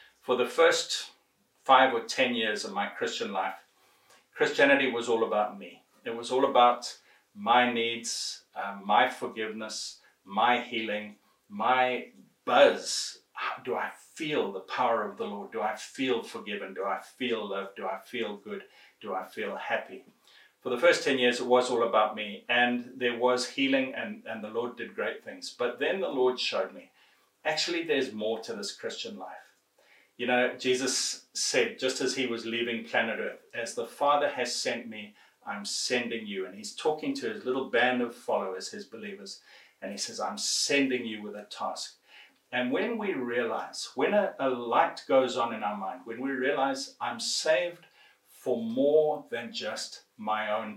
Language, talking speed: English, 180 wpm